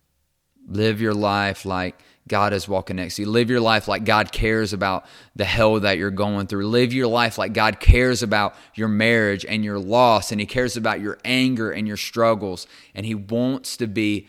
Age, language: 20-39, English